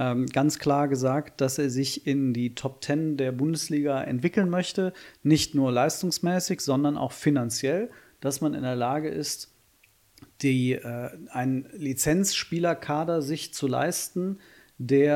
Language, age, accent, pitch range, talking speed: German, 40-59, German, 130-155 Hz, 130 wpm